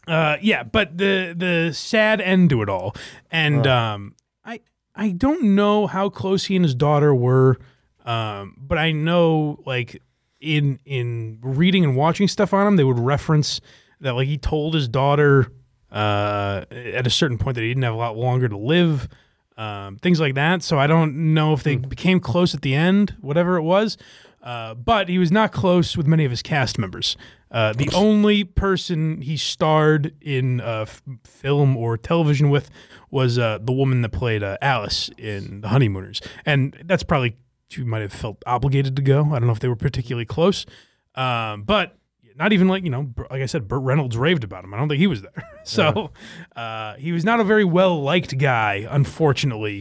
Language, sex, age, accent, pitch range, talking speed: English, male, 30-49, American, 120-170 Hz, 195 wpm